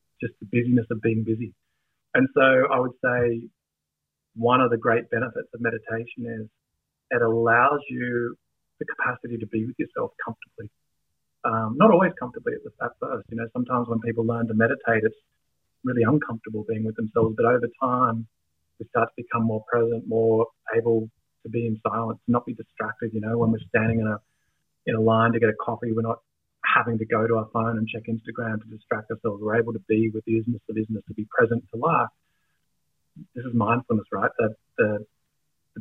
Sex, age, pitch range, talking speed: male, 30-49, 110-120 Hz, 195 wpm